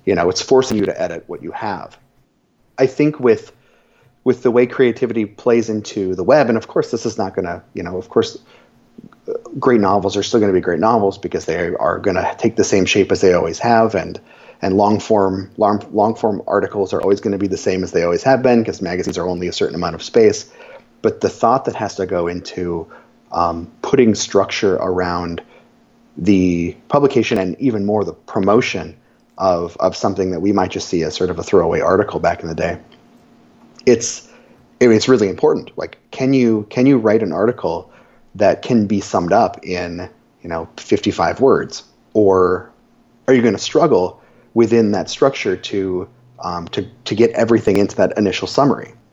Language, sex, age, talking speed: English, male, 30-49, 200 wpm